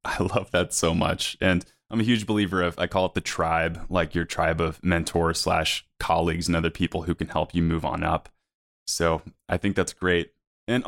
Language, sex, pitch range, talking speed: English, male, 85-100 Hz, 215 wpm